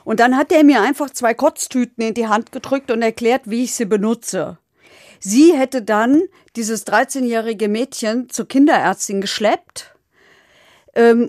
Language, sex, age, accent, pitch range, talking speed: German, female, 50-69, German, 190-245 Hz, 150 wpm